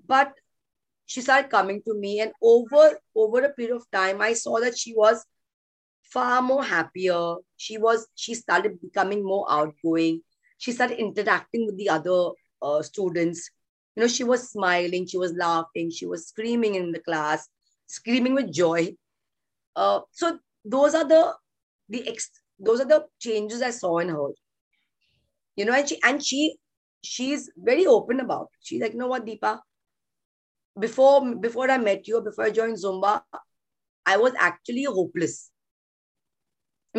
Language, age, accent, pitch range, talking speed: English, 30-49, Indian, 185-265 Hz, 160 wpm